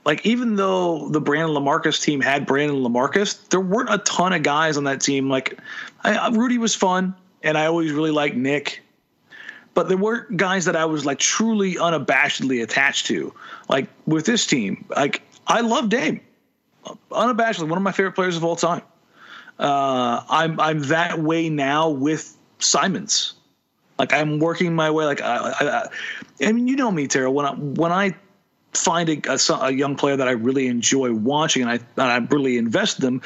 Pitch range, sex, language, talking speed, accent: 140-185 Hz, male, English, 190 wpm, American